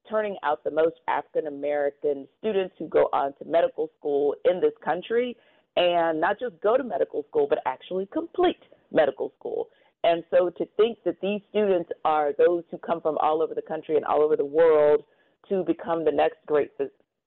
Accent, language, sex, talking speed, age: American, English, female, 190 wpm, 50-69